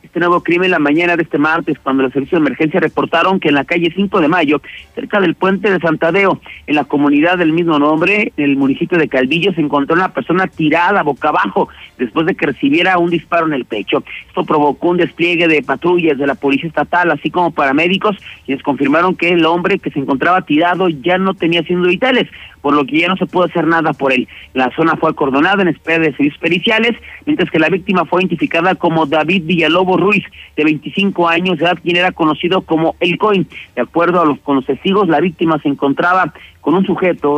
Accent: Mexican